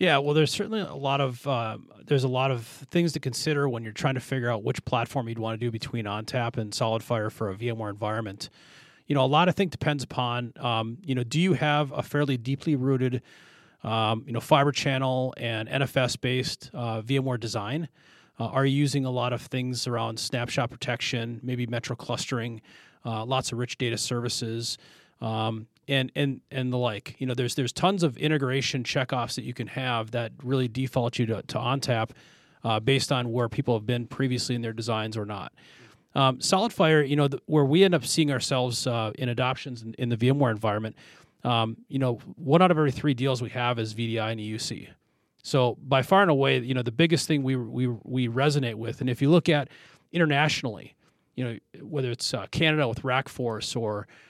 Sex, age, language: male, 30-49, English